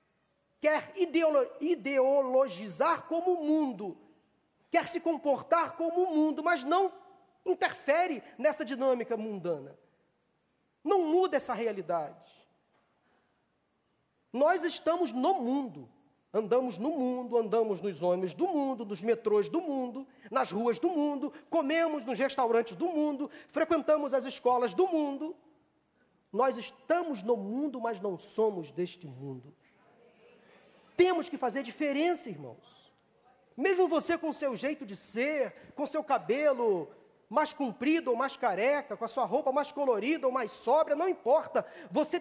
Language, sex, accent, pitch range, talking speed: Portuguese, male, Brazilian, 255-335 Hz, 130 wpm